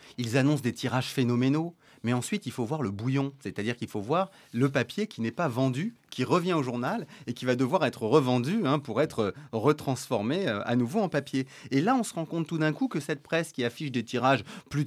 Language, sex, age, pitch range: French, male, 30-49, 115-160 Hz